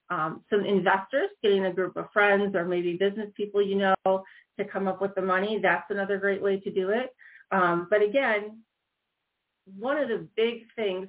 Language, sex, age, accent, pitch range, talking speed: English, female, 40-59, American, 180-215 Hz, 190 wpm